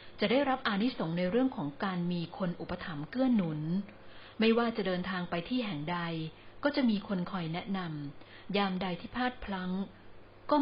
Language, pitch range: Thai, 165-220 Hz